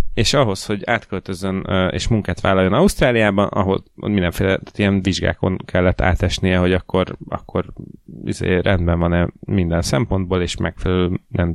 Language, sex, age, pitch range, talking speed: Hungarian, male, 30-49, 90-105 Hz, 130 wpm